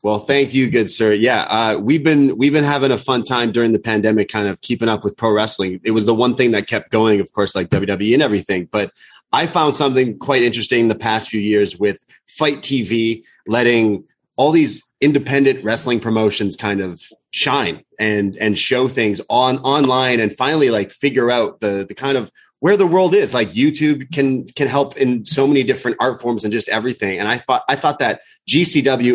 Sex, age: male, 30-49